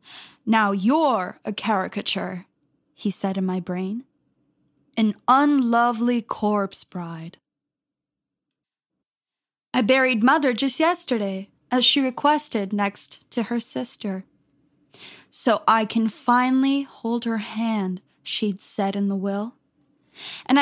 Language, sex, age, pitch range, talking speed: English, female, 10-29, 210-265 Hz, 110 wpm